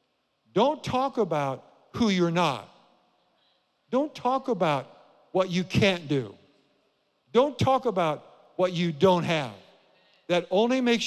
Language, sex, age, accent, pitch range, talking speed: English, male, 50-69, American, 165-220 Hz, 125 wpm